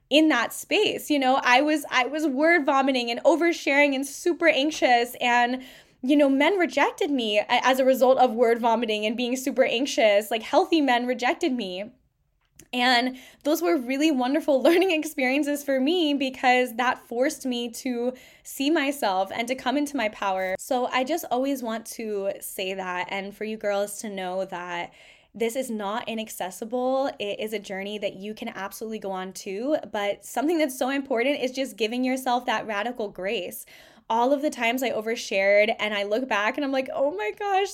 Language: English